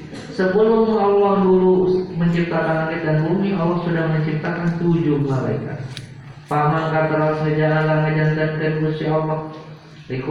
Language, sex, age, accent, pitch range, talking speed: Indonesian, male, 40-59, native, 150-175 Hz, 105 wpm